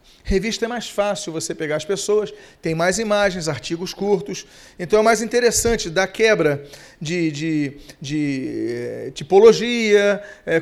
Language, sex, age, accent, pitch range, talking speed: Portuguese, male, 40-59, Brazilian, 185-235 Hz, 140 wpm